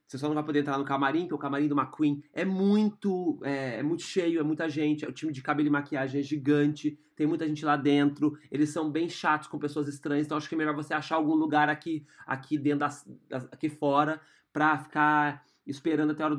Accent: Brazilian